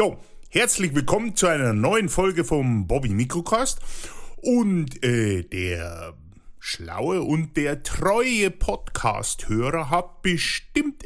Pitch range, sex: 115-175 Hz, male